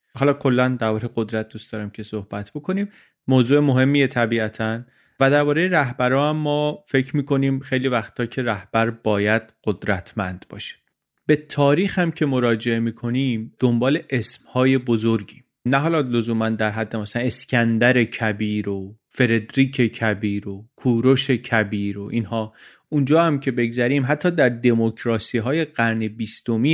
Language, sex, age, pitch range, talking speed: Persian, male, 30-49, 110-130 Hz, 135 wpm